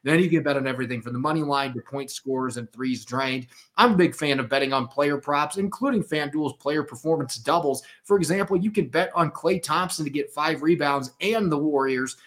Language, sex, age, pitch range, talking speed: English, male, 30-49, 130-165 Hz, 220 wpm